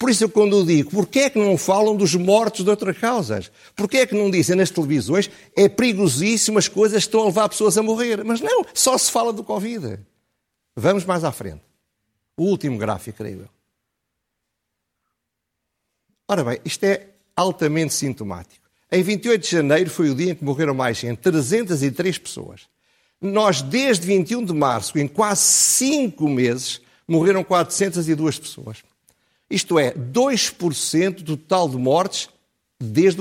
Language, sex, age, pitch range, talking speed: Portuguese, male, 50-69, 135-205 Hz, 160 wpm